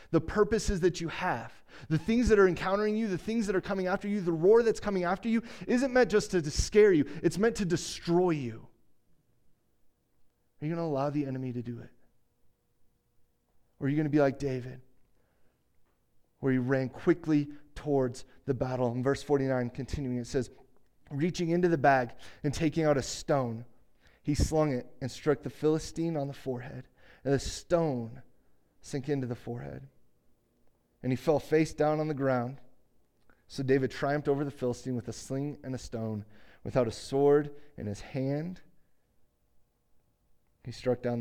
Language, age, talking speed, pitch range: English, 30-49, 175 wpm, 120-170 Hz